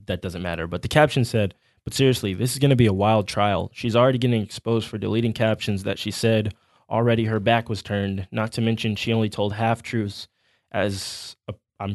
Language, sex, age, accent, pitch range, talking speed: English, male, 20-39, American, 105-120 Hz, 205 wpm